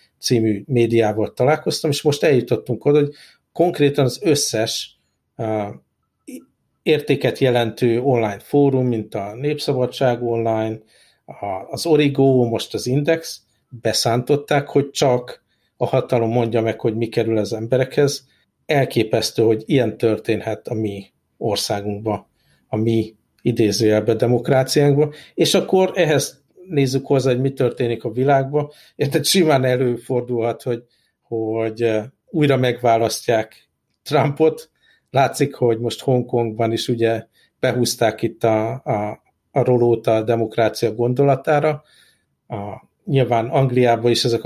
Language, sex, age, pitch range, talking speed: Hungarian, male, 50-69, 115-135 Hz, 115 wpm